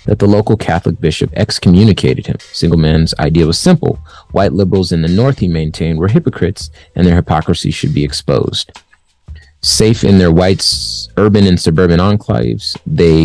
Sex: male